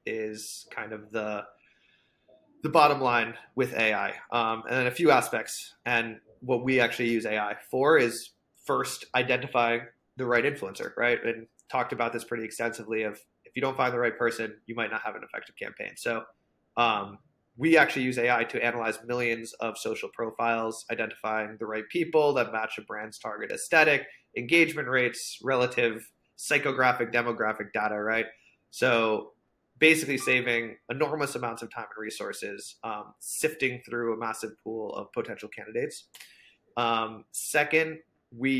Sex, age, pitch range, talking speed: male, 20-39, 115-130 Hz, 155 wpm